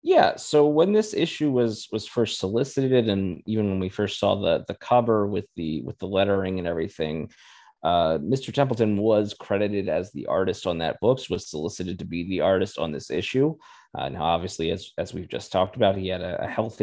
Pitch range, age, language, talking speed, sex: 95-125 Hz, 30-49, English, 210 wpm, male